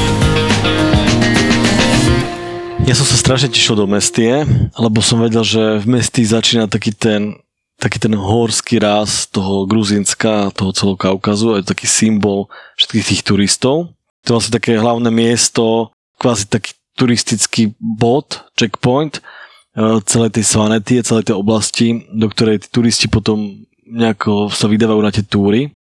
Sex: male